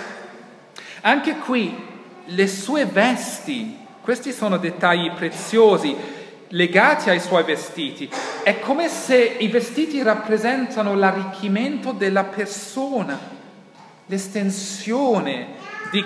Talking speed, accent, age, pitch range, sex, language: 90 wpm, native, 40-59, 175-235 Hz, male, Italian